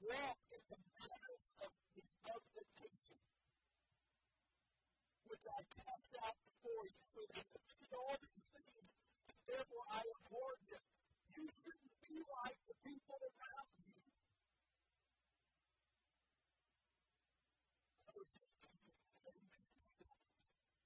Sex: female